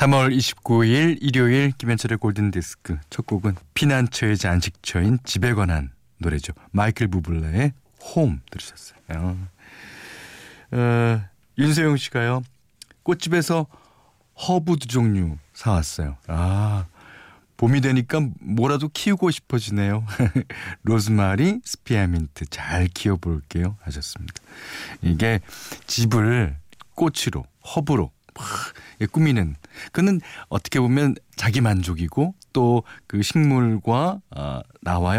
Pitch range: 90-130 Hz